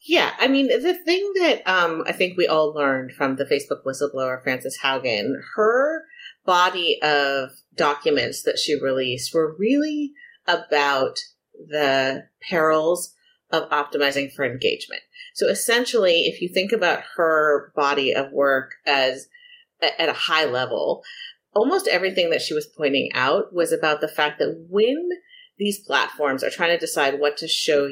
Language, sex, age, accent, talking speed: English, female, 30-49, American, 155 wpm